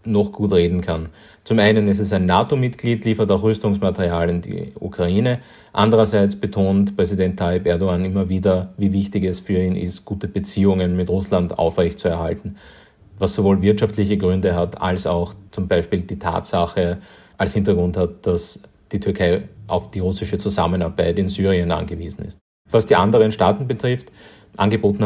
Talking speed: 155 wpm